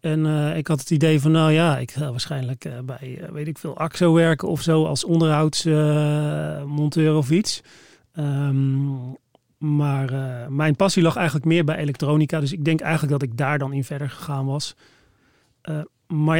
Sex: male